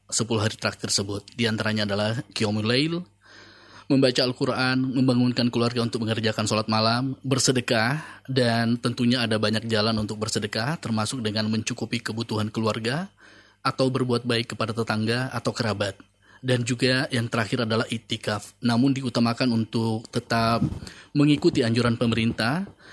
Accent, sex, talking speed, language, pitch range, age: native, male, 125 wpm, Indonesian, 110-130 Hz, 20-39